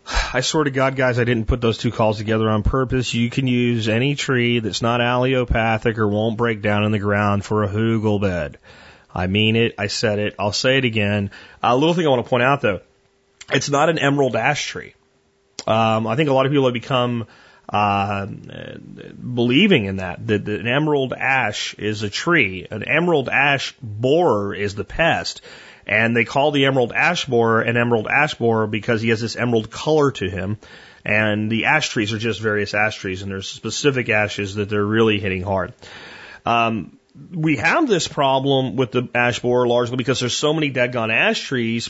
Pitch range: 105-130 Hz